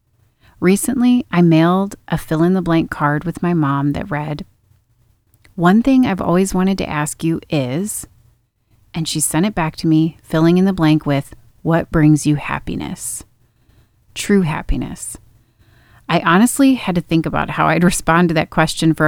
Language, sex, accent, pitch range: English, female, American, 130-175 Hz